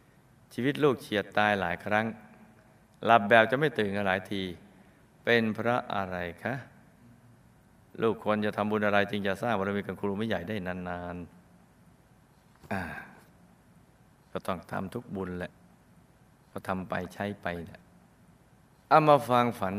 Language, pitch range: Thai, 95-120 Hz